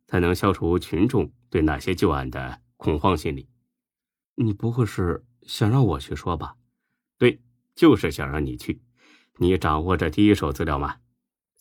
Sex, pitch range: male, 80-120 Hz